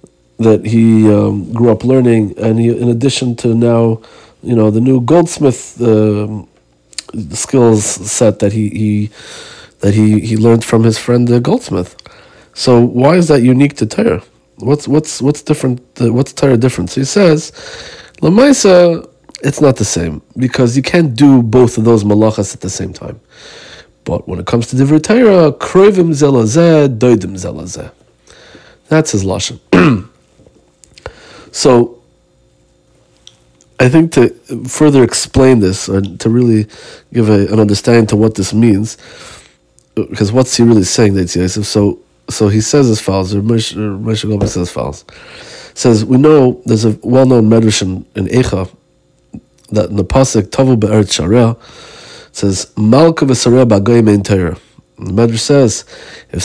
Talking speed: 145 wpm